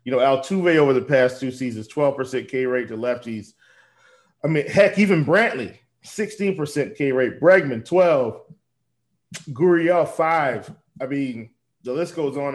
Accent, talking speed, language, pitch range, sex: American, 140 wpm, English, 125-155 Hz, male